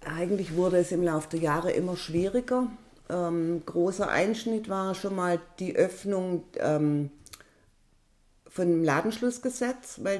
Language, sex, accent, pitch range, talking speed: English, female, German, 165-205 Hz, 125 wpm